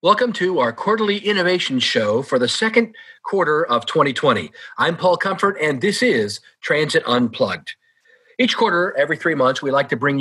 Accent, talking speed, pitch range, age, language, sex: American, 170 wpm, 140-195 Hz, 40-59, English, male